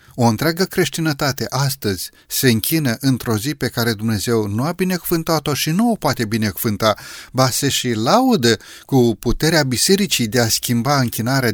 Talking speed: 160 wpm